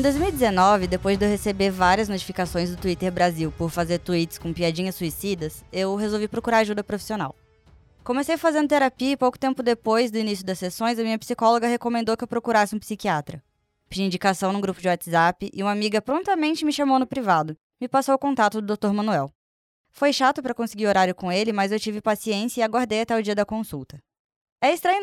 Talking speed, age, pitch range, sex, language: 200 wpm, 10-29, 180-230 Hz, female, Portuguese